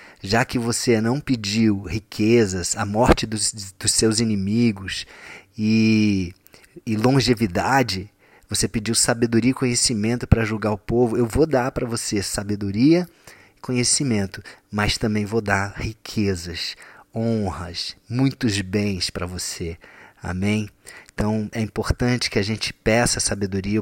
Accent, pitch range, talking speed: Brazilian, 105-130 Hz, 130 wpm